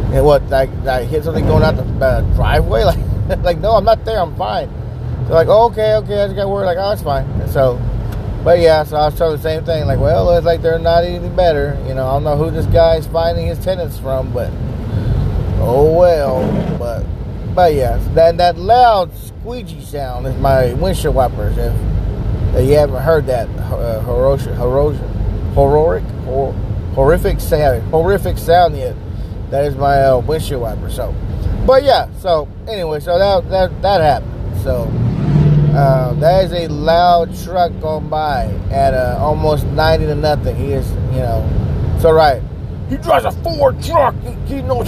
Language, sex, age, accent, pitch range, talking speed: English, male, 30-49, American, 105-160 Hz, 190 wpm